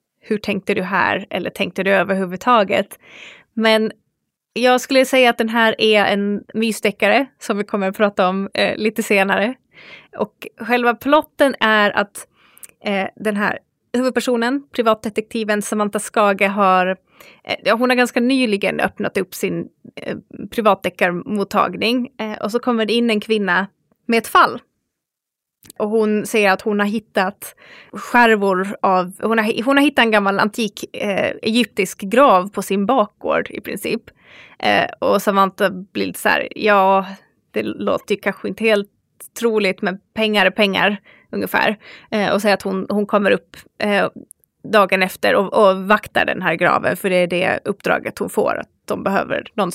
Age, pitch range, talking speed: 20-39, 195-230 Hz, 160 wpm